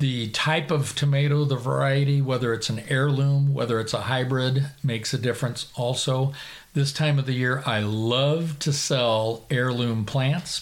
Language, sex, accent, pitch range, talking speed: English, male, American, 125-145 Hz, 165 wpm